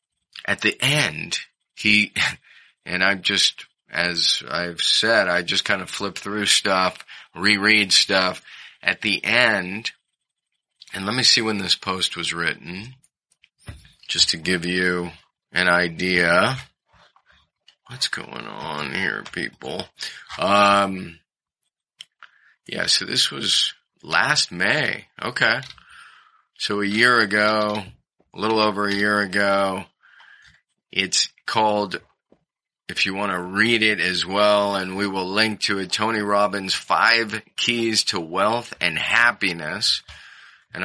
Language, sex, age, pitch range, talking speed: English, male, 30-49, 90-105 Hz, 125 wpm